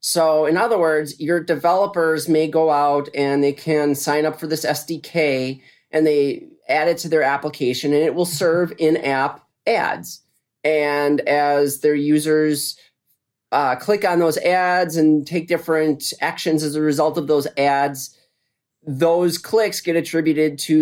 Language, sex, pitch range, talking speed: English, male, 135-165 Hz, 155 wpm